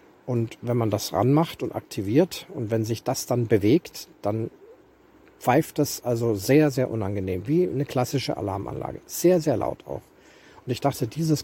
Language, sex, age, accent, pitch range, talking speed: German, male, 50-69, German, 105-140 Hz, 170 wpm